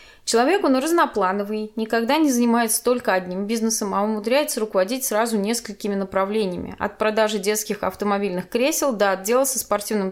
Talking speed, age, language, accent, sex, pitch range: 140 wpm, 20-39, Russian, native, female, 205-255 Hz